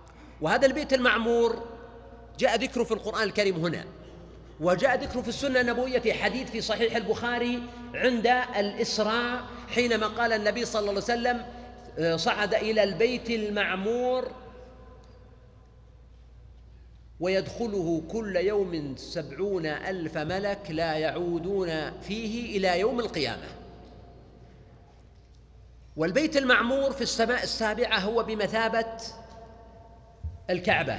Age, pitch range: 40-59, 180-235 Hz